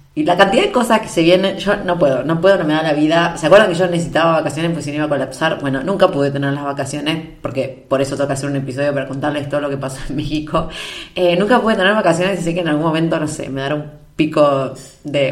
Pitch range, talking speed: 145-170 Hz, 270 wpm